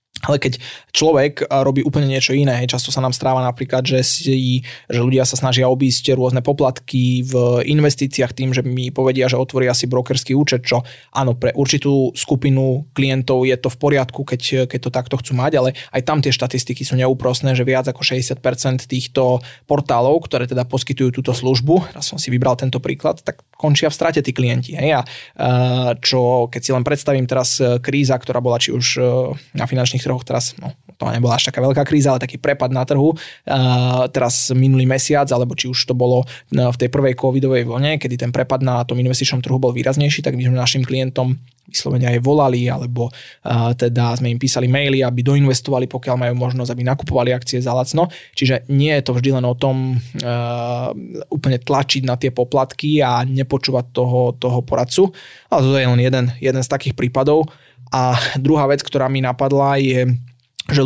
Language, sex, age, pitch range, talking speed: Slovak, male, 20-39, 125-135 Hz, 185 wpm